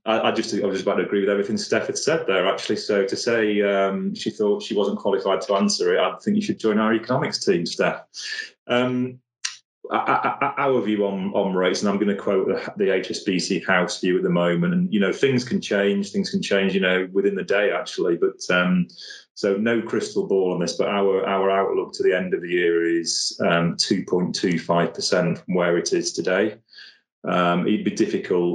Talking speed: 215 wpm